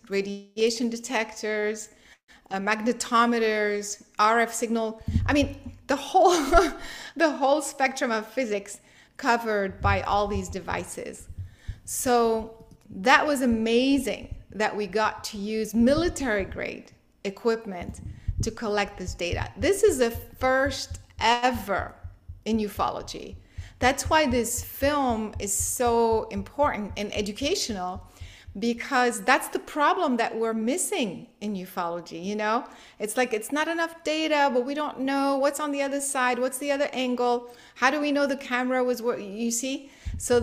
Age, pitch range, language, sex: 30-49, 205-270 Hz, English, female